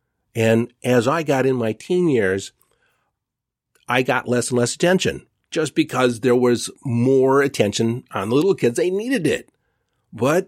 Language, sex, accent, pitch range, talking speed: English, male, American, 115-155 Hz, 160 wpm